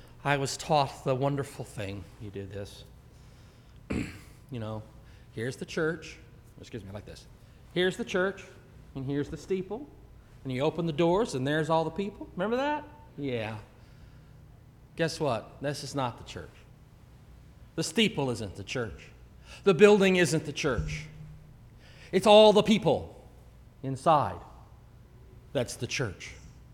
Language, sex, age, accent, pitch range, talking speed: English, male, 40-59, American, 120-170 Hz, 140 wpm